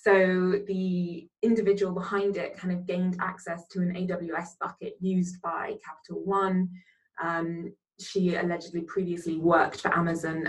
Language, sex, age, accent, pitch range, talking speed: English, female, 20-39, British, 170-205 Hz, 135 wpm